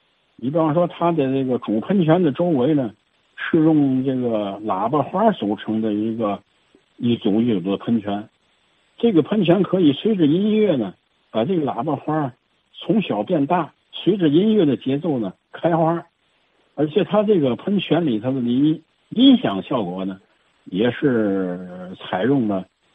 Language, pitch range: Chinese, 110-165 Hz